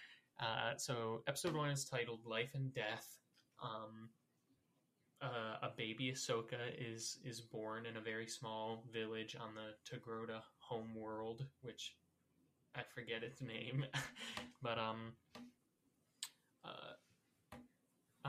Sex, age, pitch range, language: male, 10-29, 110-130 Hz, English